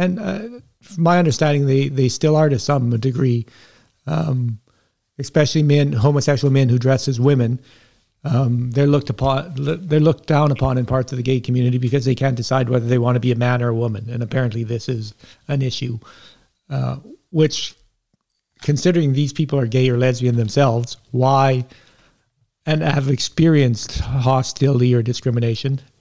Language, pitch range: English, 120-140 Hz